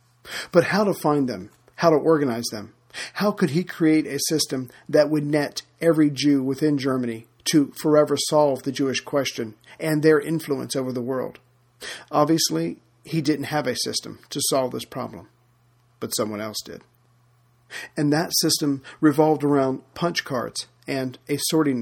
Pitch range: 125-155 Hz